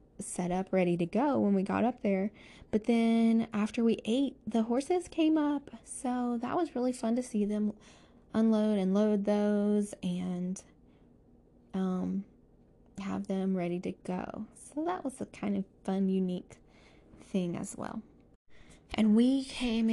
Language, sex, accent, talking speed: English, female, American, 155 wpm